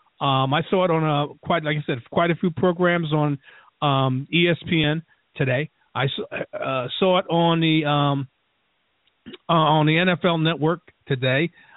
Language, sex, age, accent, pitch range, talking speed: English, male, 40-59, American, 145-170 Hz, 160 wpm